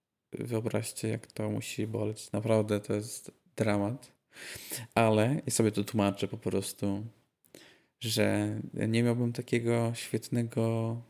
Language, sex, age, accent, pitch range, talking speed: Polish, male, 20-39, native, 105-120 Hz, 115 wpm